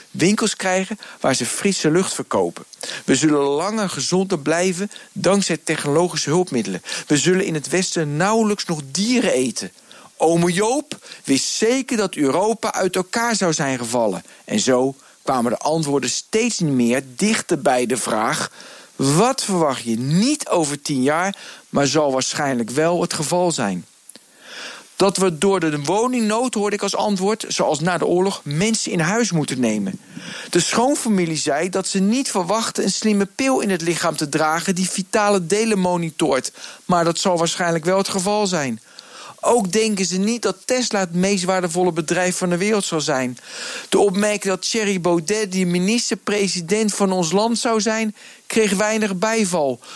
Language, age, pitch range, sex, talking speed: Dutch, 50-69, 160-215 Hz, male, 165 wpm